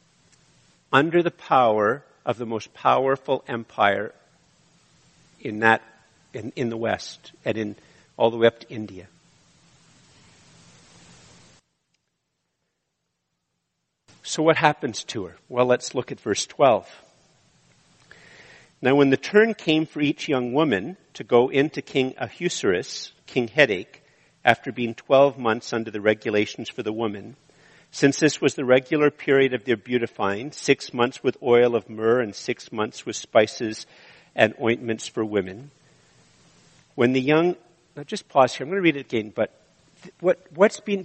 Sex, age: male, 50-69